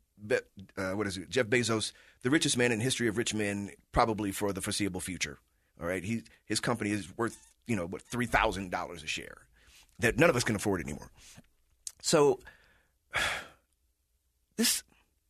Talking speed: 175 wpm